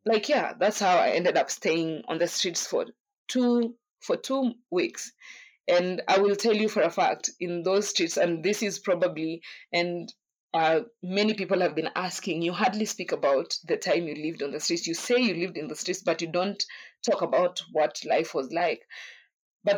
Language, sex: English, female